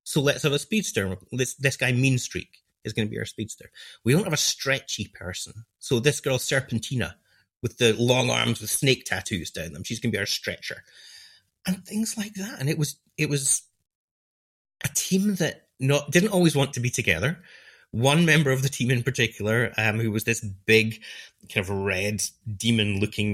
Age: 30-49